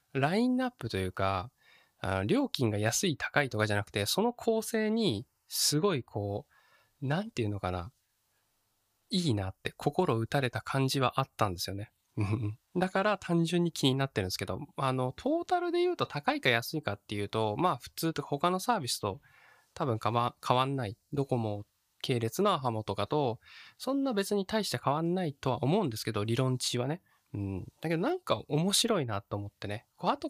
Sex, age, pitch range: male, 20-39, 105-170 Hz